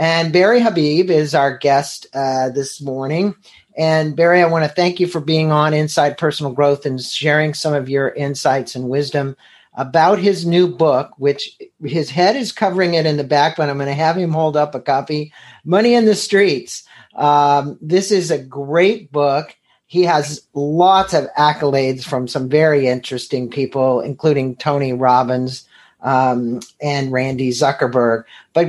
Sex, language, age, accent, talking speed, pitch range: male, English, 50-69, American, 170 wpm, 135-165 Hz